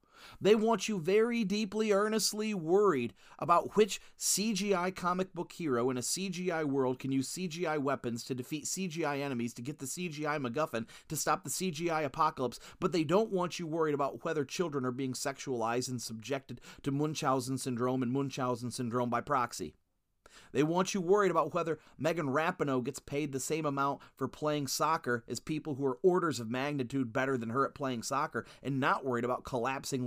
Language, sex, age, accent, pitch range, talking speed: English, male, 30-49, American, 130-175 Hz, 180 wpm